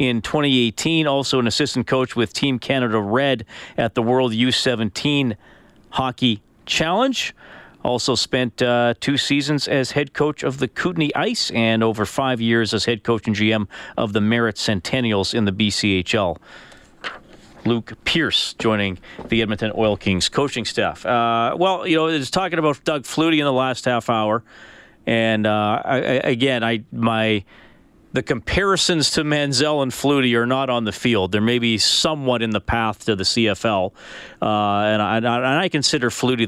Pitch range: 110-140 Hz